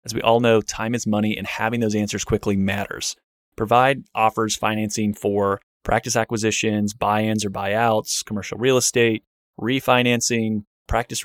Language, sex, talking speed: English, male, 145 wpm